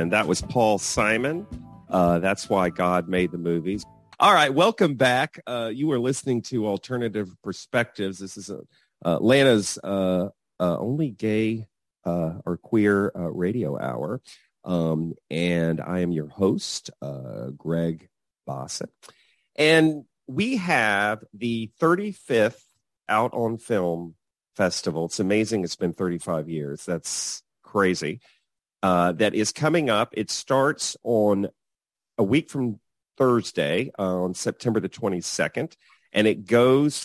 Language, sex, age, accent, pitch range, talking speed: English, male, 40-59, American, 90-120 Hz, 135 wpm